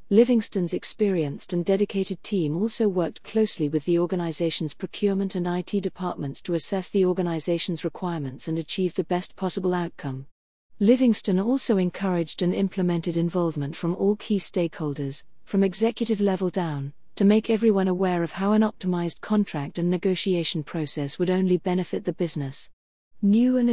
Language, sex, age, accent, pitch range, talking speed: English, female, 40-59, British, 170-205 Hz, 150 wpm